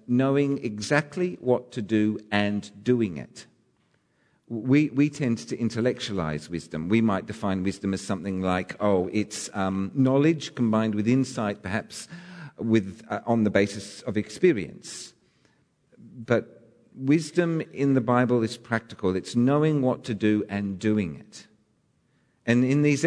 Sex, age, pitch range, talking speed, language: male, 50-69, 115-160 Hz, 140 wpm, English